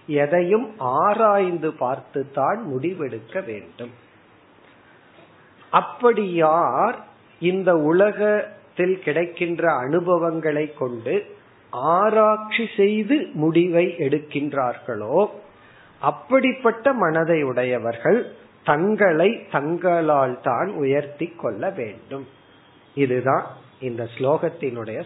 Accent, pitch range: native, 135-170 Hz